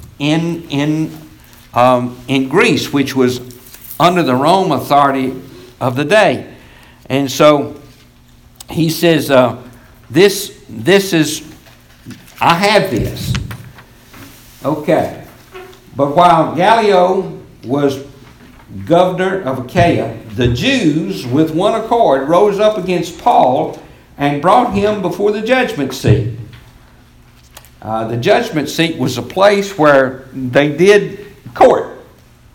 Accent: American